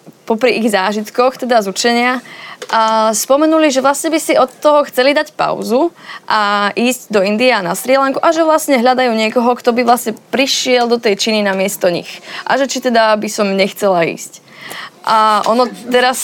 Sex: female